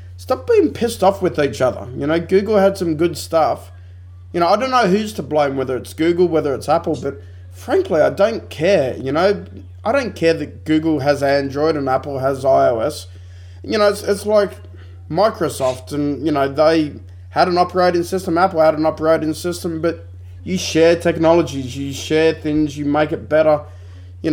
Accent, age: Australian, 20-39